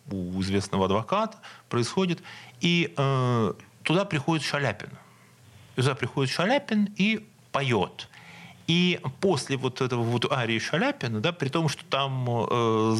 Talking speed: 125 wpm